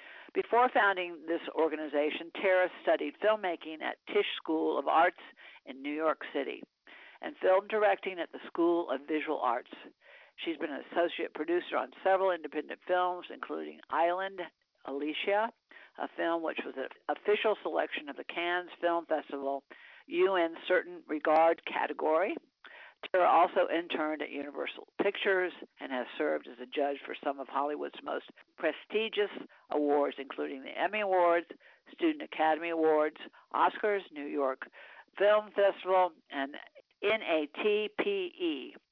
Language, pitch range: English, 155-200 Hz